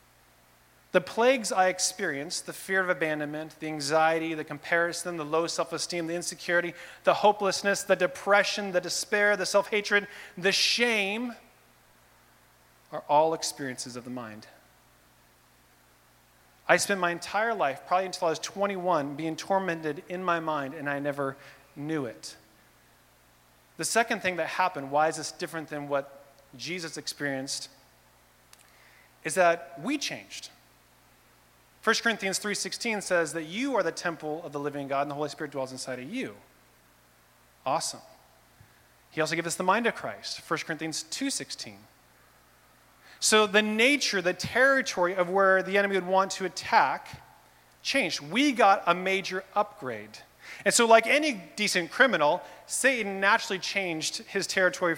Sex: male